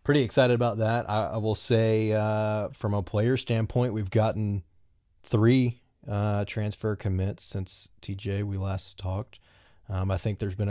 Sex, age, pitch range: male, 20-39, 95-110 Hz